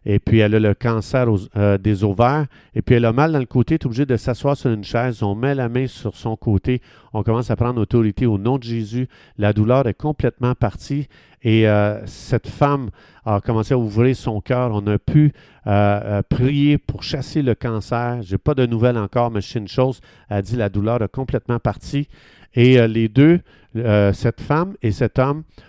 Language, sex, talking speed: French, male, 220 wpm